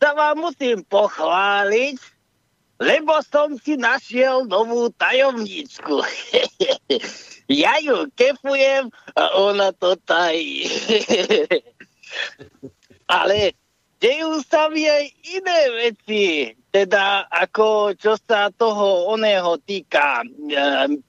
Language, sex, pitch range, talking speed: Slovak, male, 200-295 Hz, 85 wpm